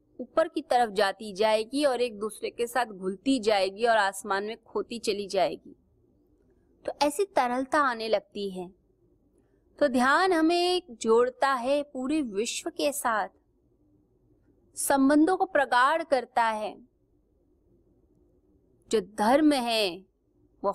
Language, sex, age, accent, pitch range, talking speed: Hindi, female, 30-49, native, 200-275 Hz, 120 wpm